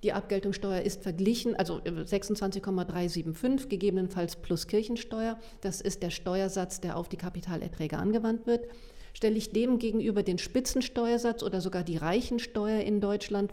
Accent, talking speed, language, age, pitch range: German, 140 wpm, English, 40-59, 185-220 Hz